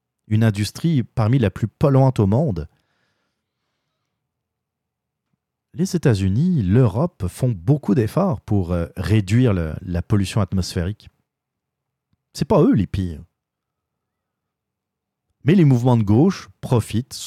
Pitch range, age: 105-145 Hz, 40-59